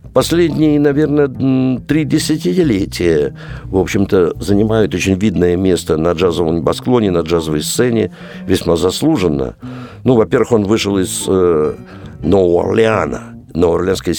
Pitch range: 80-115 Hz